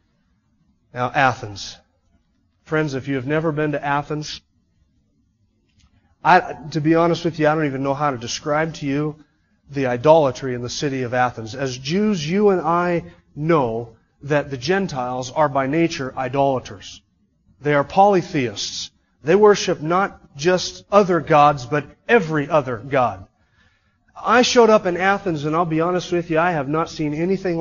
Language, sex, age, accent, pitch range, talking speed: English, male, 30-49, American, 145-190 Hz, 160 wpm